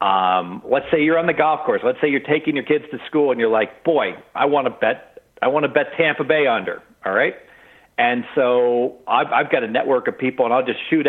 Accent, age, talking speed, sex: American, 50-69, 250 wpm, male